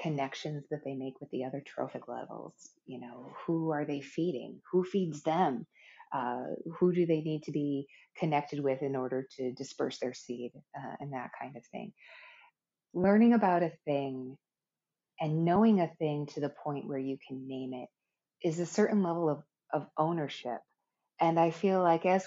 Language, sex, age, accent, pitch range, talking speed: English, female, 30-49, American, 135-175 Hz, 180 wpm